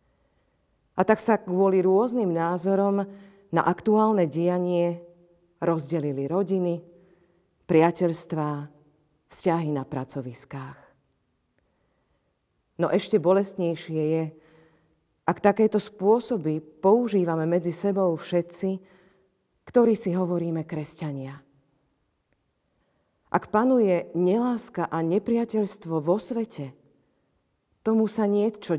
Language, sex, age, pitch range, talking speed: Slovak, female, 40-59, 155-195 Hz, 85 wpm